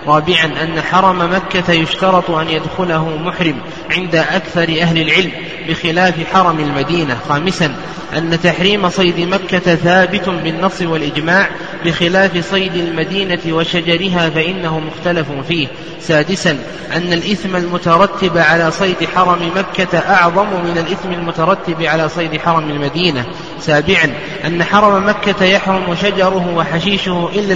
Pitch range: 165-190 Hz